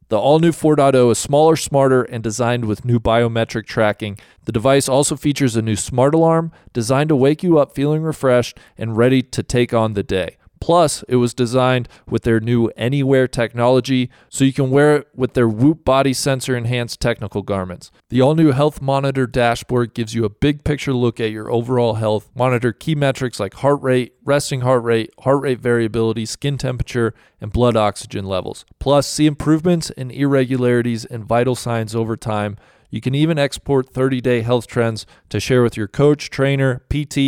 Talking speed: 180 wpm